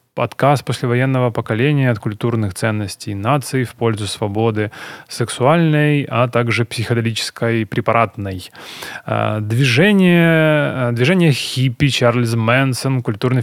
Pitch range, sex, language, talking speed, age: 120-145 Hz, male, Ukrainian, 95 wpm, 20-39